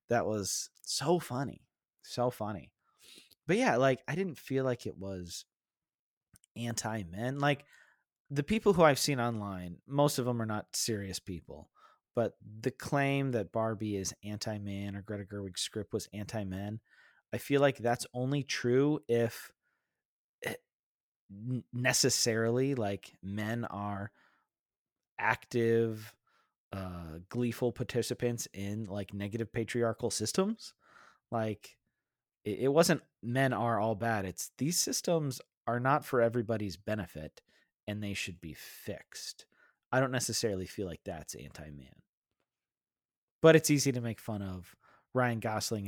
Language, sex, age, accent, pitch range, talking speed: English, male, 20-39, American, 100-125 Hz, 130 wpm